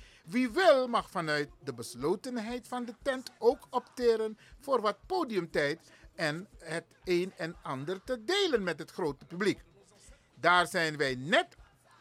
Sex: male